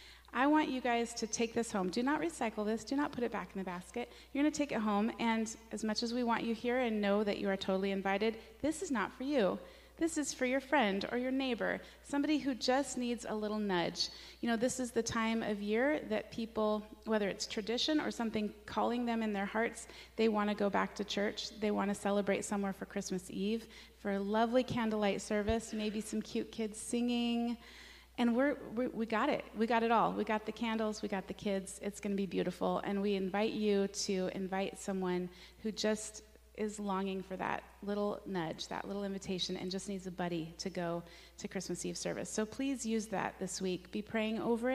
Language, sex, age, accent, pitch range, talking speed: English, female, 30-49, American, 200-245 Hz, 225 wpm